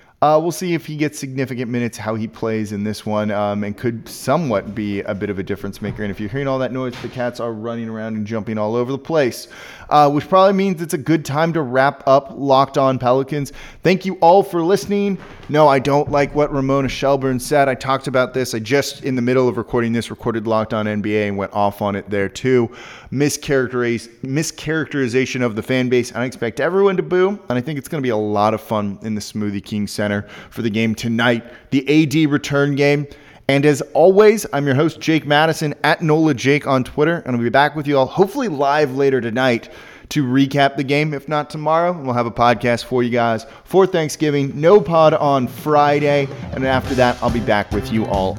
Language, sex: English, male